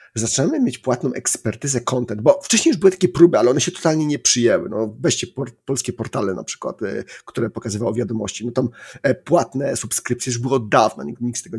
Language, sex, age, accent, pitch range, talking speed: Polish, male, 40-59, native, 115-135 Hz, 210 wpm